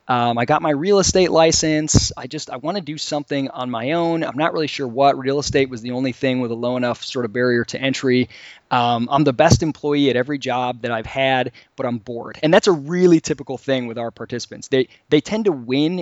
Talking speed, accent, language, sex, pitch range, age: 245 wpm, American, English, male, 125-150 Hz, 20-39